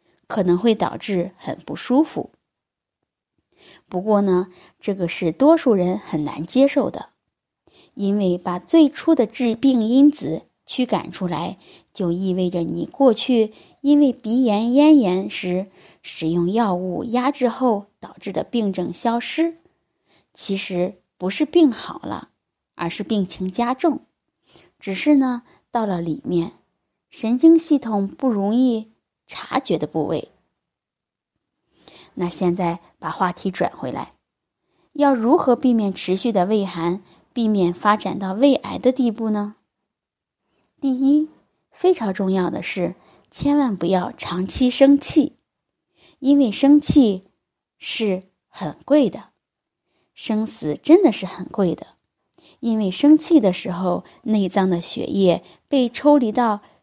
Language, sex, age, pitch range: Chinese, female, 20-39, 185-275 Hz